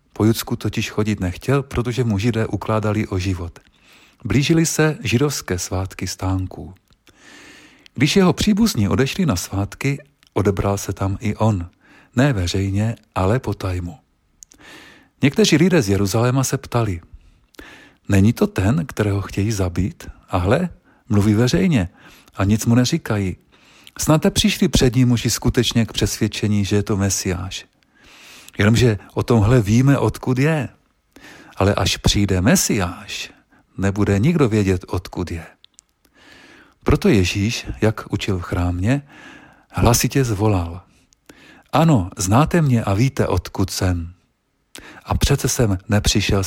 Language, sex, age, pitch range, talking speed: Czech, male, 40-59, 95-130 Hz, 125 wpm